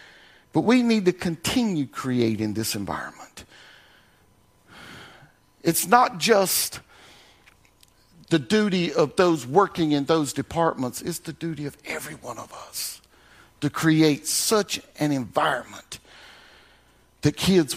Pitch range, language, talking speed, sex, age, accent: 165-275 Hz, English, 115 wpm, male, 50-69, American